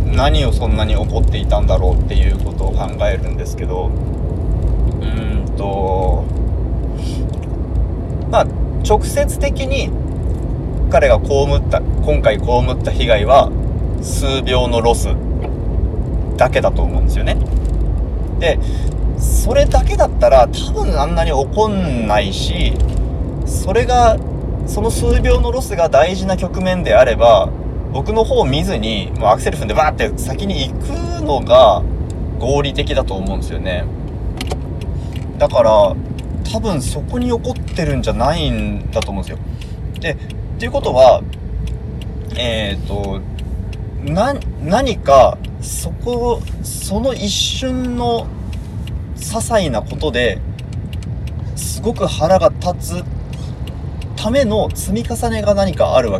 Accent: native